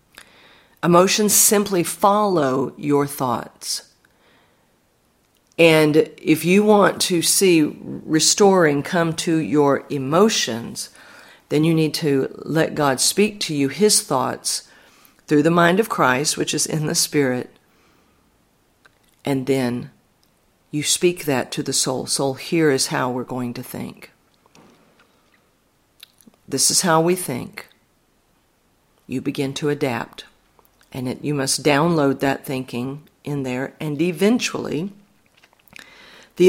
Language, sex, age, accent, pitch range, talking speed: English, female, 50-69, American, 140-170 Hz, 120 wpm